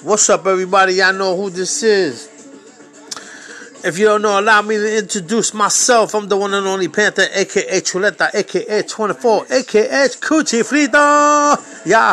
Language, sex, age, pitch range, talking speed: English, male, 30-49, 165-215 Hz, 155 wpm